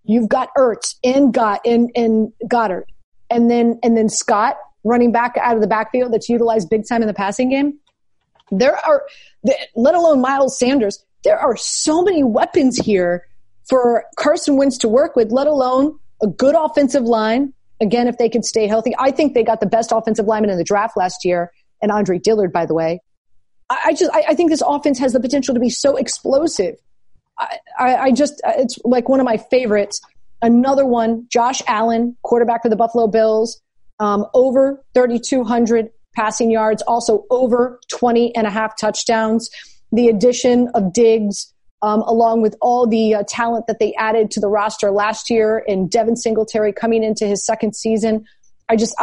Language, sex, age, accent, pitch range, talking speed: English, female, 30-49, American, 215-250 Hz, 180 wpm